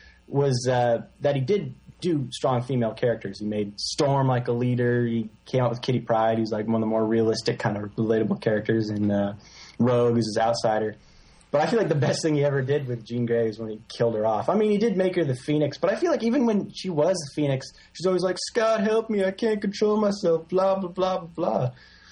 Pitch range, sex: 115-145 Hz, male